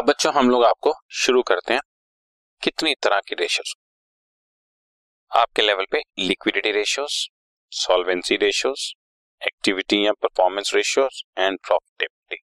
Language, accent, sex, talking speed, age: Hindi, native, male, 110 wpm, 30-49